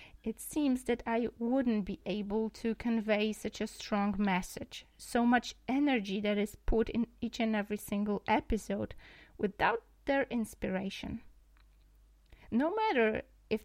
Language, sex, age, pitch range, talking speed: Polish, female, 30-49, 205-255 Hz, 135 wpm